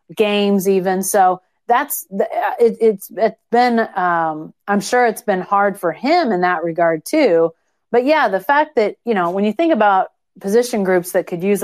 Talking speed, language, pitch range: 180 wpm, English, 175-220 Hz